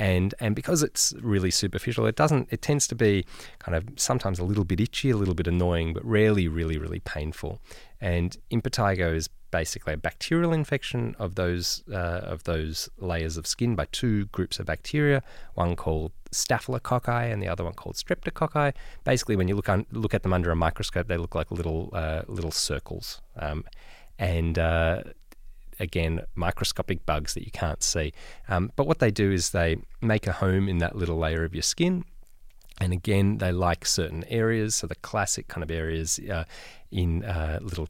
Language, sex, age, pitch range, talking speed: English, male, 20-39, 80-110 Hz, 190 wpm